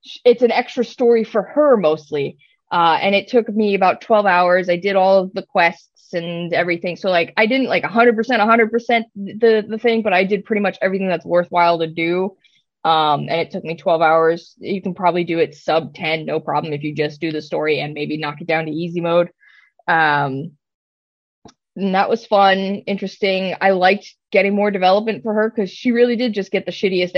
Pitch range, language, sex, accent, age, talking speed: 170-225 Hz, English, female, American, 20-39, 215 wpm